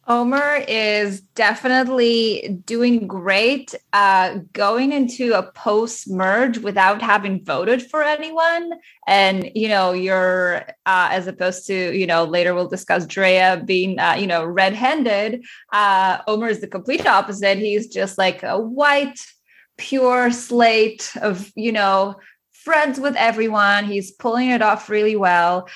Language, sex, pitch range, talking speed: English, female, 190-245 Hz, 135 wpm